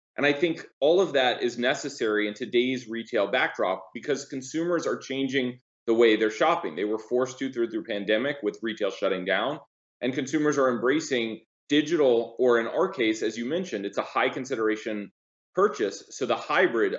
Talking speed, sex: 175 wpm, male